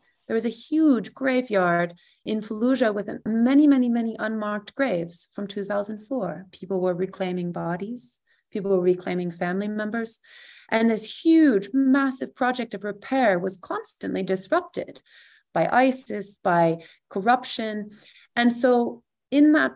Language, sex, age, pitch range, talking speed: English, female, 30-49, 180-250 Hz, 130 wpm